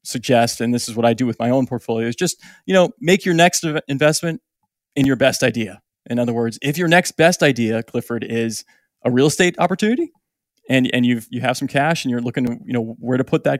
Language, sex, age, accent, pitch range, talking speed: English, male, 20-39, American, 115-150 Hz, 240 wpm